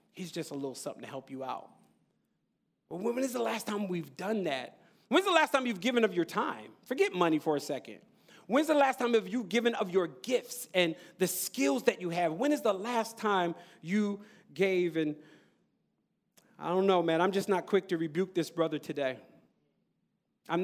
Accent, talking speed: American, 205 wpm